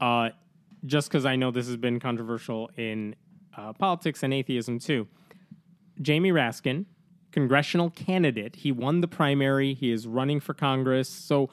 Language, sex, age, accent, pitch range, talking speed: English, male, 20-39, American, 130-180 Hz, 150 wpm